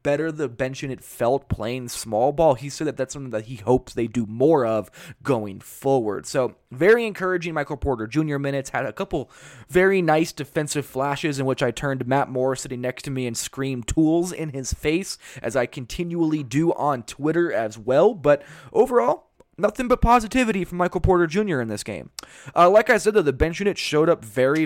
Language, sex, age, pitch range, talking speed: English, male, 20-39, 125-160 Hz, 200 wpm